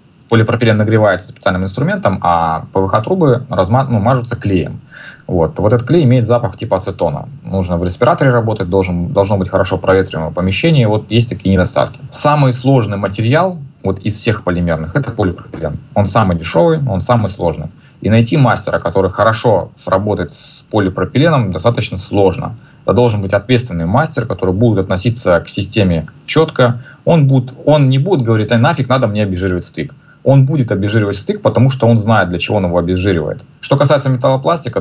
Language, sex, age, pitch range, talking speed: Russian, male, 20-39, 95-125 Hz, 155 wpm